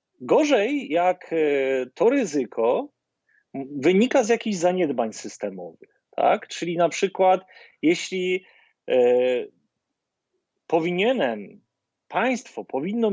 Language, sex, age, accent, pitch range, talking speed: Polish, male, 40-59, native, 155-215 Hz, 80 wpm